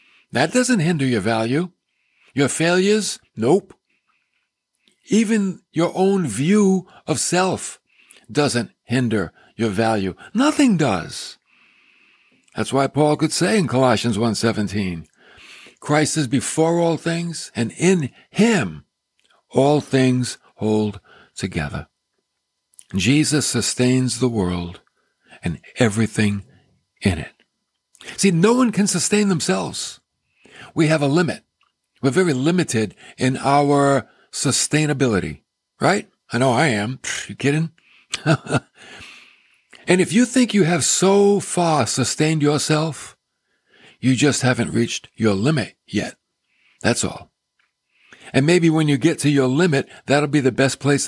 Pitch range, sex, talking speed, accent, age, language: 115-170 Hz, male, 120 wpm, American, 60-79, English